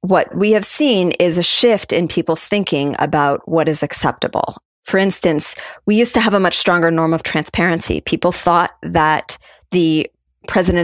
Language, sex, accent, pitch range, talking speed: English, female, American, 155-190 Hz, 170 wpm